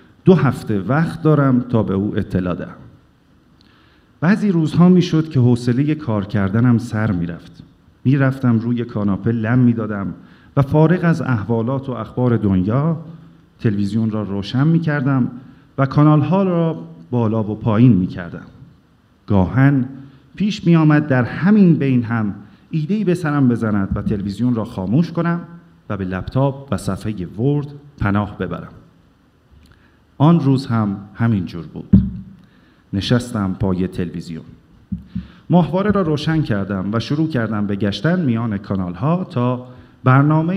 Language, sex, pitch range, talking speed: Persian, male, 105-150 Hz, 130 wpm